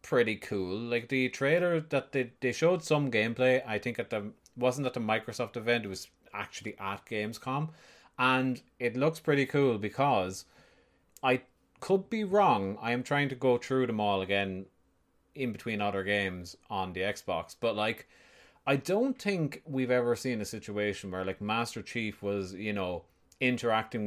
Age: 30-49